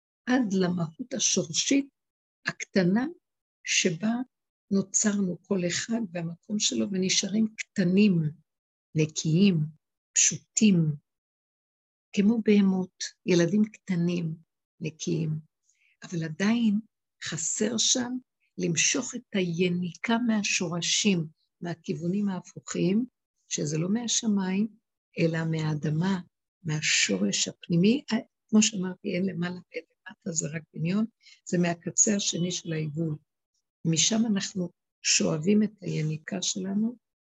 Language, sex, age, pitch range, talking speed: Hebrew, female, 60-79, 165-215 Hz, 90 wpm